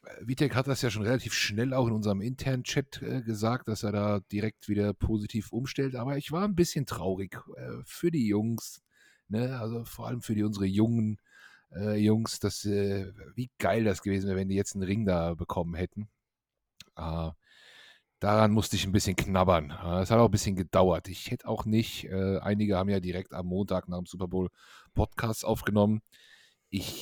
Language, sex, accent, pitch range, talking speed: German, male, German, 95-120 Hz, 190 wpm